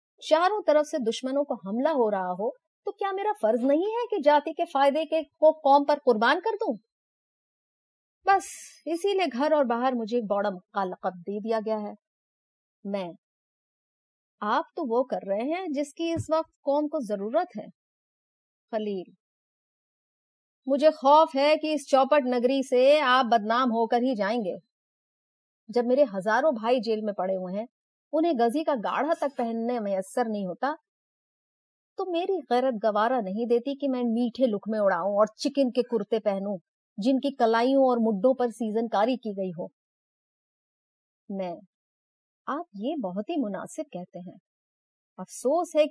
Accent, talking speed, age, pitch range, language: native, 155 wpm, 30-49, 215-300 Hz, Hindi